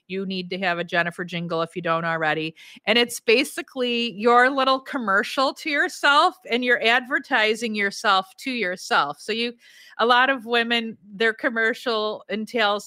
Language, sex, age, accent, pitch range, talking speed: English, female, 30-49, American, 185-250 Hz, 160 wpm